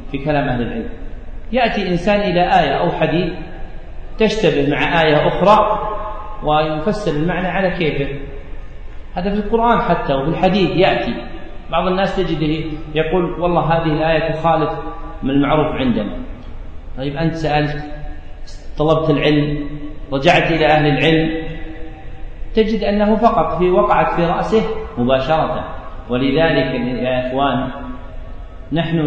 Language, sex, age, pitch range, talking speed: Arabic, male, 40-59, 135-170 Hz, 115 wpm